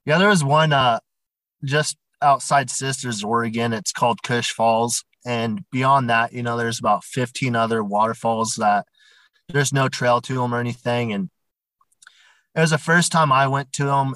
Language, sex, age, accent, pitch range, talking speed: English, male, 30-49, American, 120-145 Hz, 175 wpm